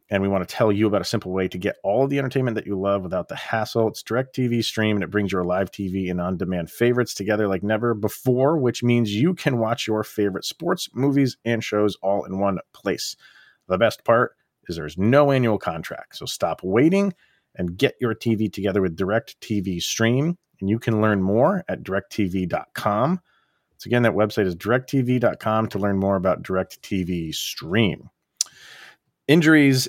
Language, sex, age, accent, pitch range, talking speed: English, male, 40-59, American, 100-135 Hz, 195 wpm